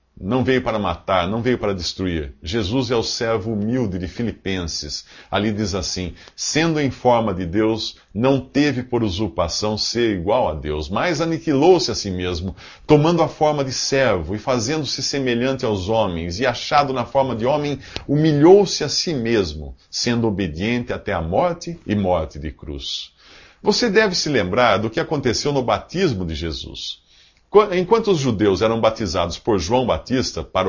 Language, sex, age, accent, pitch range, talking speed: English, male, 50-69, Brazilian, 95-135 Hz, 165 wpm